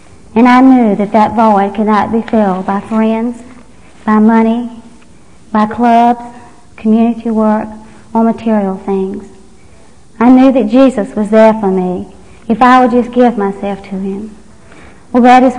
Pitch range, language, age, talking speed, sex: 205-245 Hz, English, 50-69, 150 wpm, male